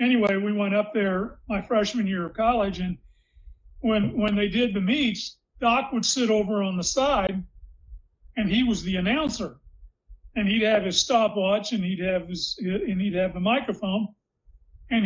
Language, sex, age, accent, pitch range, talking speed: English, male, 40-59, American, 195-245 Hz, 175 wpm